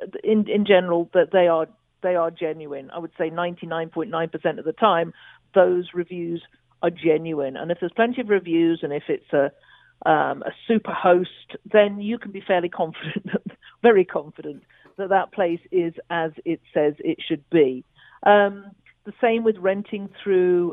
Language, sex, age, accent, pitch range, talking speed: English, female, 50-69, British, 160-195 Hz, 160 wpm